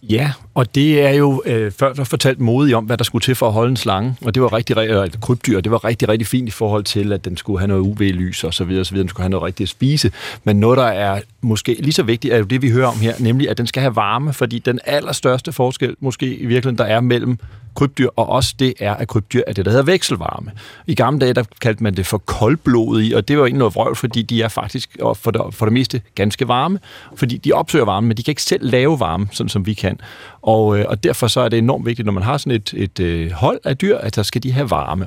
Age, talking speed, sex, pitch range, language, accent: 40-59, 275 wpm, male, 105-130 Hz, Danish, native